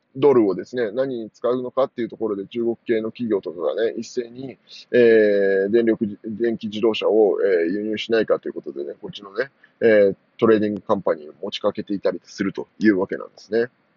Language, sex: Japanese, male